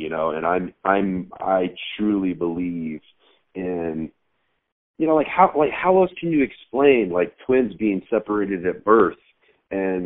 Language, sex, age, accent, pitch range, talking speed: English, male, 40-59, American, 90-110 Hz, 155 wpm